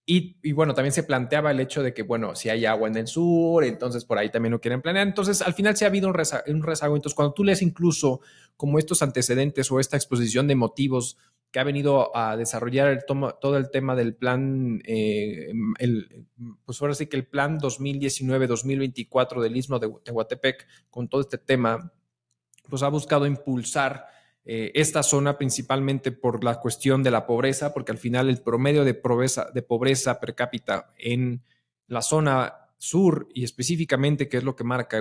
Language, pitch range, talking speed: English, 120-145 Hz, 185 wpm